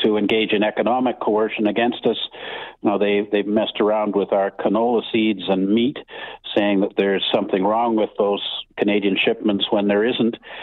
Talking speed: 170 wpm